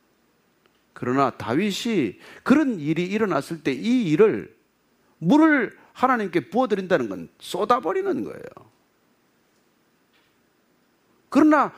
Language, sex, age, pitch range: Korean, male, 40-59, 170-260 Hz